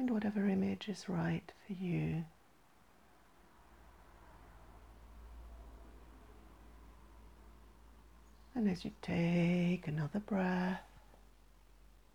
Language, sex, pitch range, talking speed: English, female, 165-205 Hz, 60 wpm